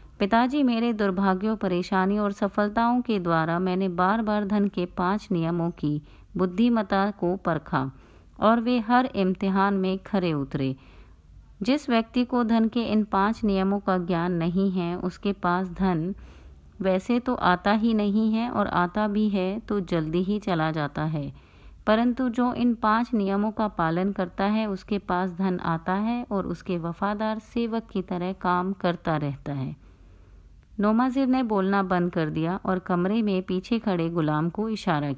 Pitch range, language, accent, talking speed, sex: 170-215 Hz, Hindi, native, 160 wpm, female